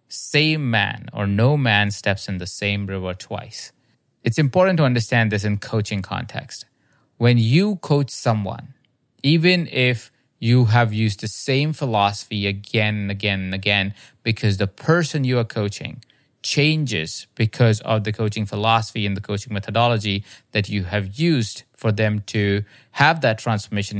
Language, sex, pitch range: English, male, 105-130 Hz